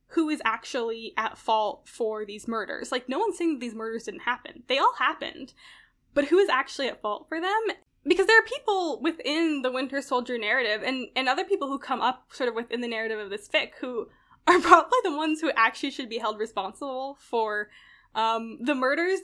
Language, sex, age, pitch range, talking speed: English, female, 10-29, 220-285 Hz, 210 wpm